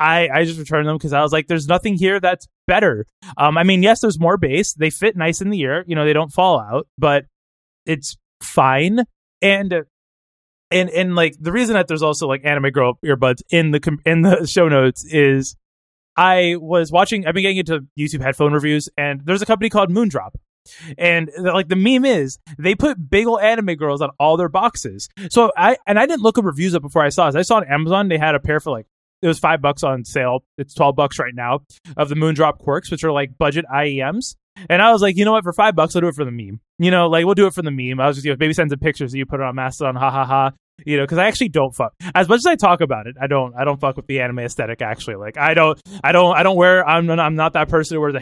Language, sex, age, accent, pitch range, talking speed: English, male, 20-39, American, 140-185 Hz, 270 wpm